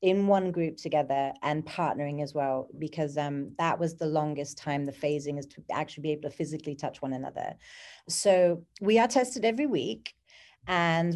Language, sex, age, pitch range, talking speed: English, female, 30-49, 155-195 Hz, 185 wpm